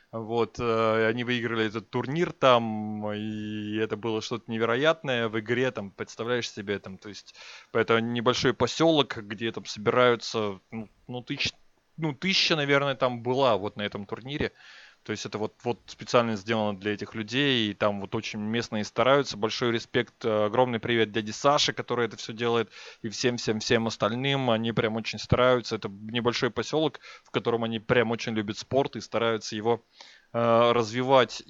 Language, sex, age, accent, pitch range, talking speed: Russian, male, 20-39, native, 110-130 Hz, 165 wpm